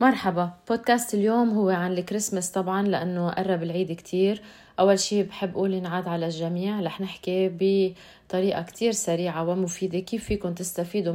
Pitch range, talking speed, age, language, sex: 175-200 Hz, 145 wpm, 20-39, Arabic, female